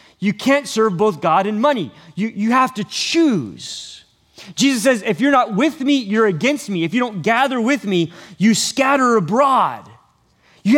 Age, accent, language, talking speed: 30-49, American, English, 180 wpm